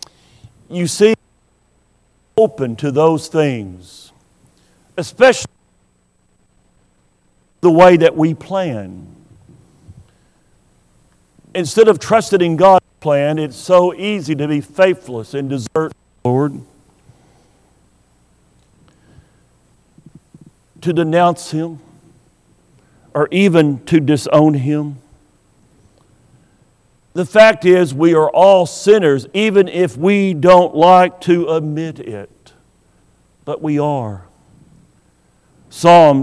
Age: 50-69